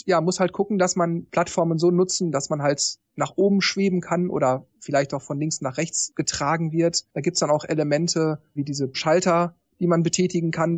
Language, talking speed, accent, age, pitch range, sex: German, 210 wpm, German, 40-59, 145-180 Hz, male